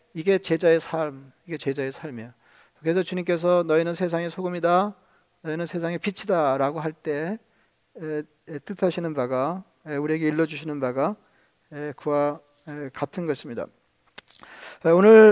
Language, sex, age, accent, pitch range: Korean, male, 40-59, native, 155-205 Hz